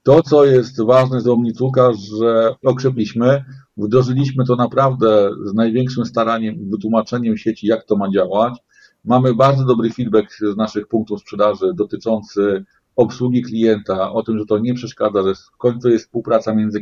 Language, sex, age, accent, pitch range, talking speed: Polish, male, 40-59, native, 105-130 Hz, 150 wpm